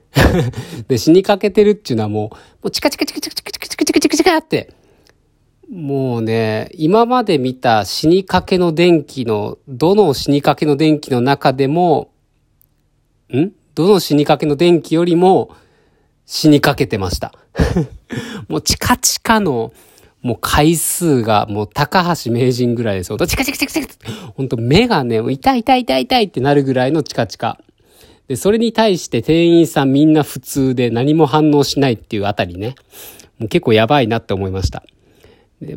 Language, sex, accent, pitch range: Japanese, male, native, 115-185 Hz